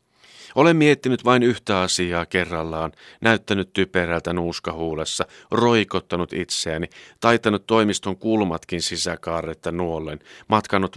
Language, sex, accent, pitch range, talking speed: Finnish, male, native, 85-115 Hz, 95 wpm